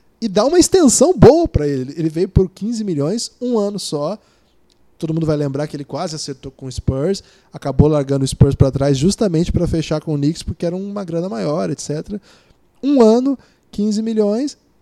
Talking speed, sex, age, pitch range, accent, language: 195 wpm, male, 20-39, 135-200 Hz, Brazilian, Portuguese